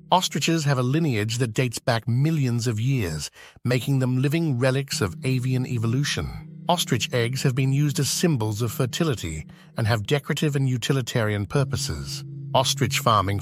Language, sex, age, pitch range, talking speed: English, male, 50-69, 115-150 Hz, 150 wpm